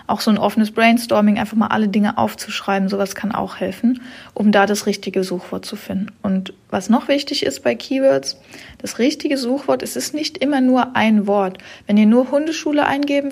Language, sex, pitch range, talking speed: German, female, 195-250 Hz, 195 wpm